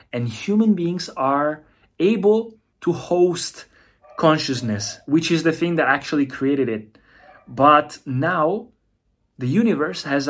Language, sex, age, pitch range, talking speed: Italian, male, 30-49, 115-175 Hz, 120 wpm